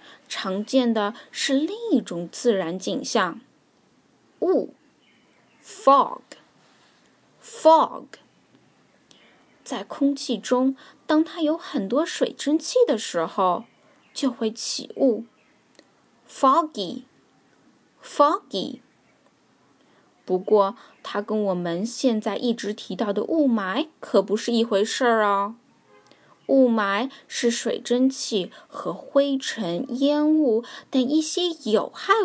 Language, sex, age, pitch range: Chinese, female, 10-29, 210-280 Hz